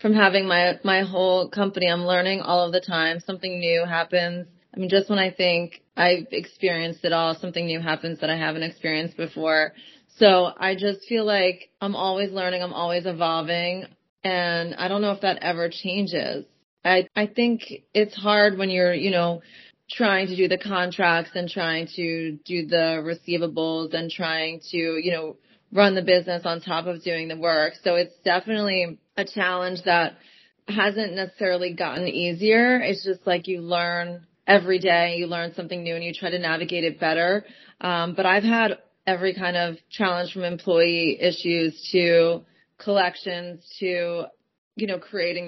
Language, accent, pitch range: English, American, 170-195 Hz